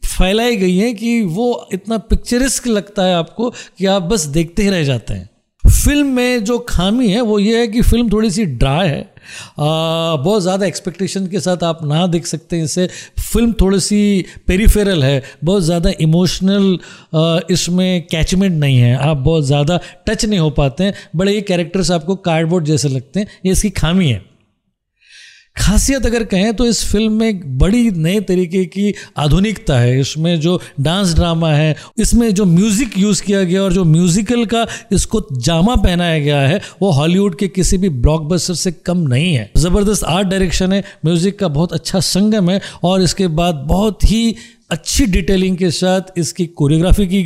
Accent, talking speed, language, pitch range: native, 180 wpm, Hindi, 165-205 Hz